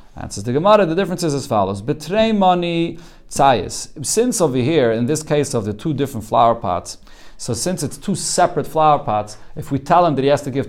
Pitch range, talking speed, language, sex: 130-165 Hz, 220 wpm, English, male